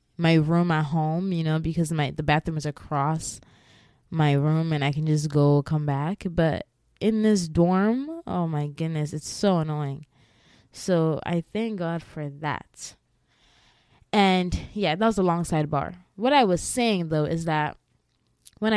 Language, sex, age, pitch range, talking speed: English, female, 20-39, 155-190 Hz, 165 wpm